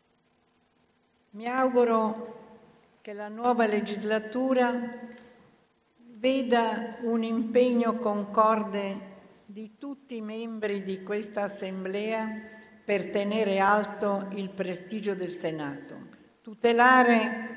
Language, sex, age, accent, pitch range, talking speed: Italian, female, 60-79, native, 195-235 Hz, 85 wpm